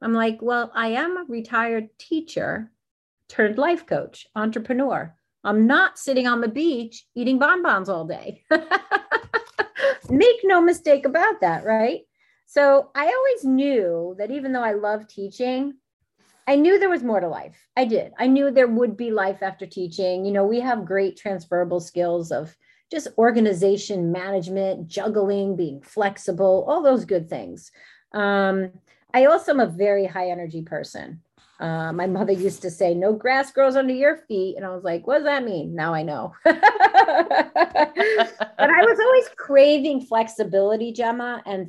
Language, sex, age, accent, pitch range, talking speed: English, female, 30-49, American, 190-270 Hz, 165 wpm